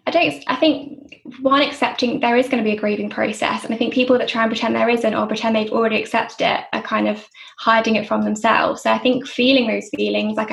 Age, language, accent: 10-29, English, British